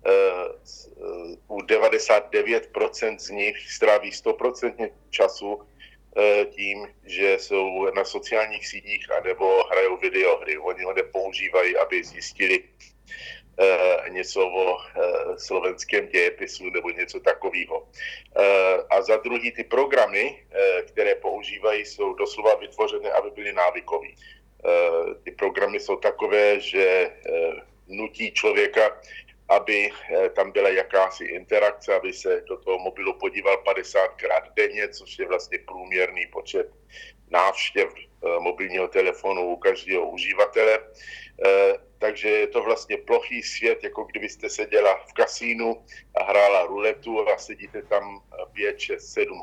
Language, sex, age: Slovak, male, 50-69